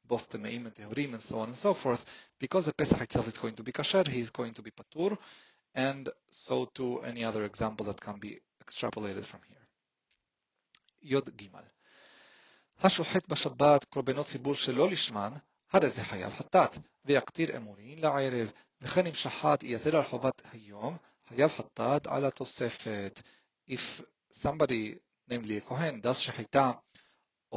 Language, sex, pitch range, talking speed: English, male, 110-140 Hz, 100 wpm